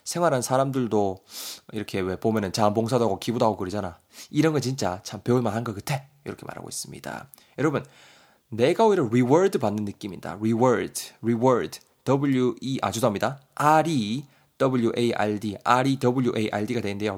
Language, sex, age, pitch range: Korean, male, 20-39, 105-145 Hz